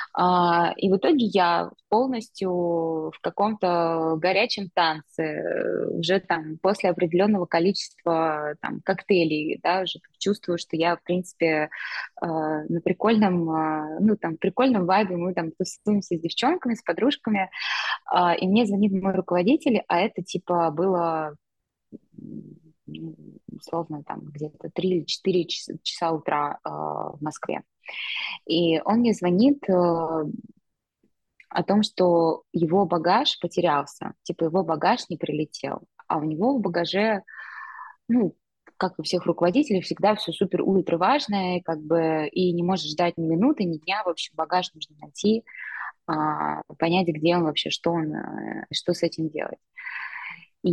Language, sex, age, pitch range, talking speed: Russian, female, 20-39, 160-195 Hz, 130 wpm